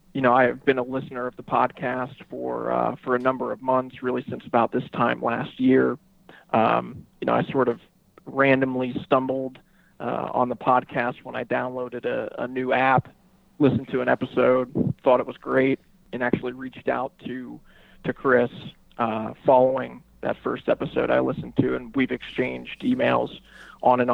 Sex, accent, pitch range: male, American, 120-140 Hz